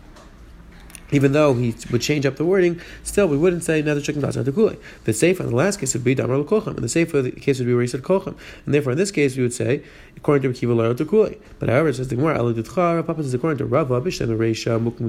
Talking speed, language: 270 wpm, English